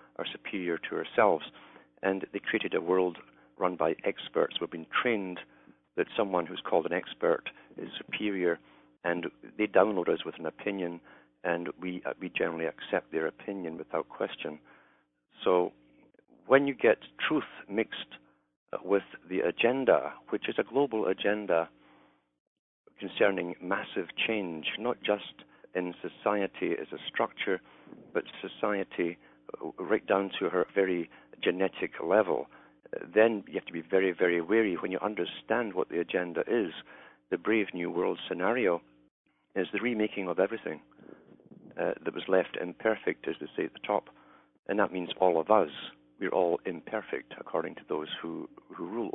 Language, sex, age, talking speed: English, male, 50-69, 150 wpm